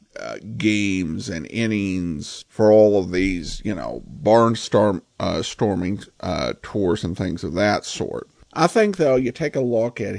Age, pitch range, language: 50-69, 105-140 Hz, English